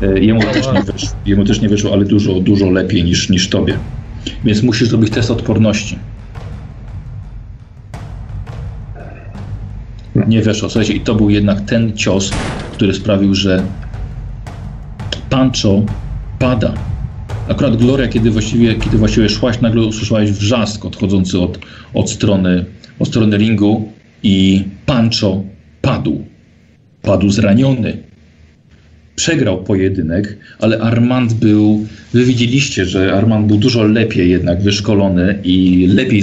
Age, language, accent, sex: 40-59, Polish, native, male